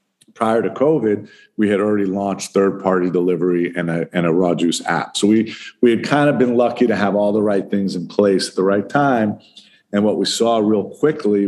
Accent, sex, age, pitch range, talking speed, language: American, male, 50-69, 90-100 Hz, 220 wpm, English